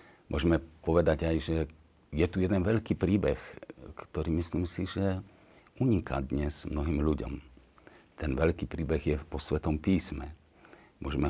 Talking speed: 135 wpm